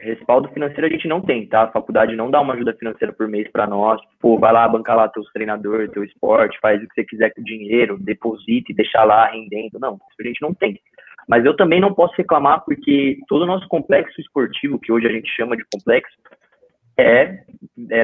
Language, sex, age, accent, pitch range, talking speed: Portuguese, male, 20-39, Brazilian, 110-160 Hz, 225 wpm